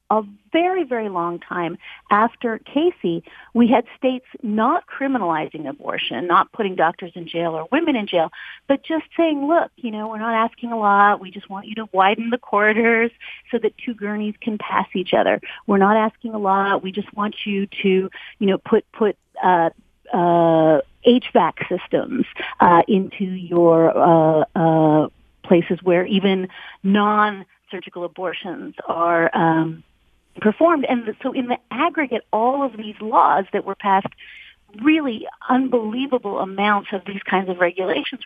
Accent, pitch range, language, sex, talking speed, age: American, 185-250 Hz, English, female, 155 wpm, 40-59